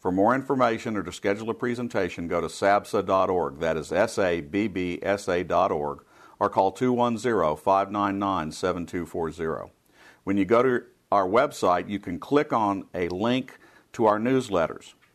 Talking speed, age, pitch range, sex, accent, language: 125 wpm, 50-69, 90-115 Hz, male, American, English